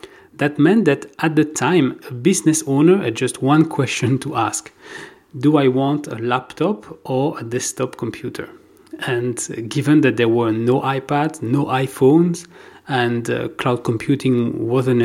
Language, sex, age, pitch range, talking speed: English, male, 40-59, 125-170 Hz, 150 wpm